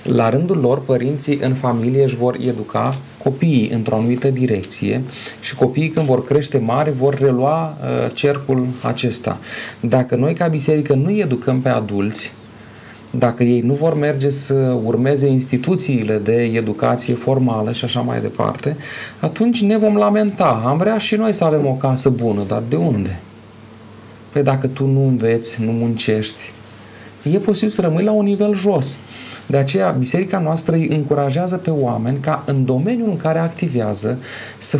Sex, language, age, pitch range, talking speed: male, Romanian, 30-49, 125-195 Hz, 160 wpm